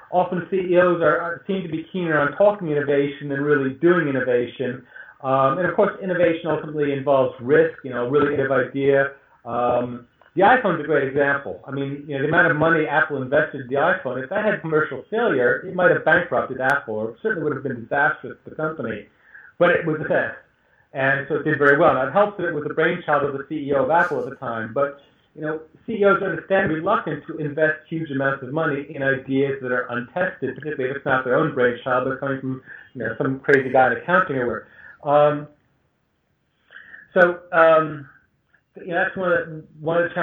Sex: male